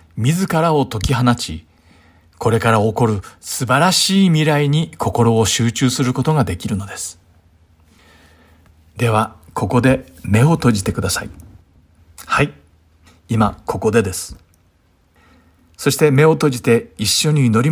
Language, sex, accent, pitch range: Japanese, male, native, 90-135 Hz